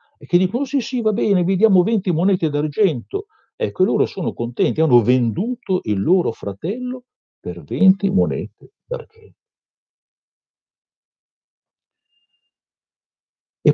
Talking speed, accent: 120 wpm, native